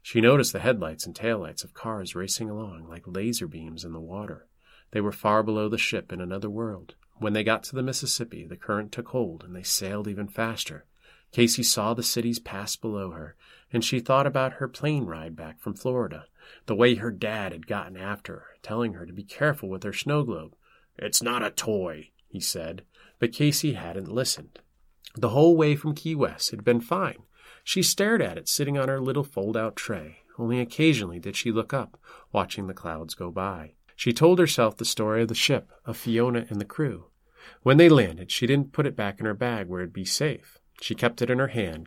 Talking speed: 210 wpm